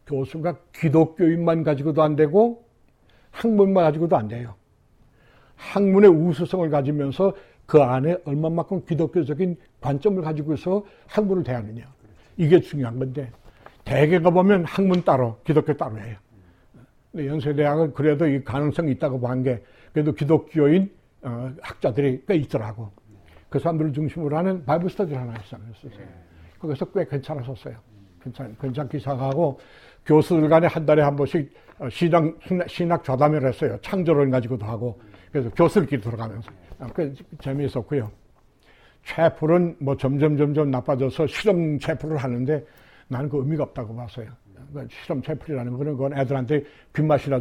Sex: male